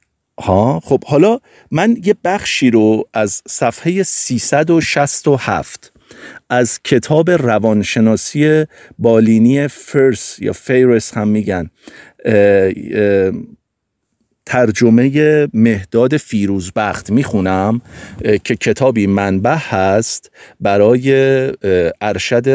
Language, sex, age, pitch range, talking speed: Persian, male, 50-69, 105-135 Hz, 90 wpm